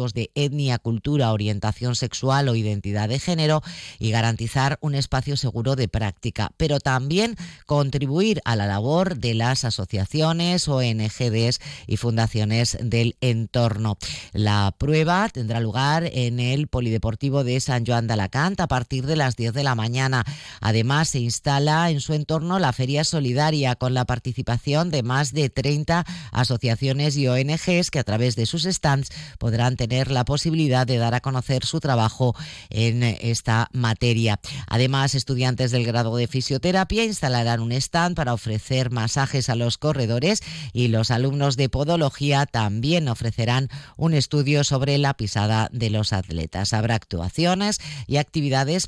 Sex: female